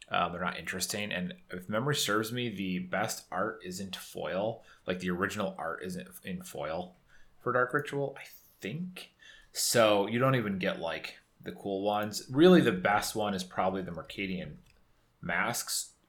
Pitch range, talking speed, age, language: 90-120 Hz, 165 wpm, 30-49, English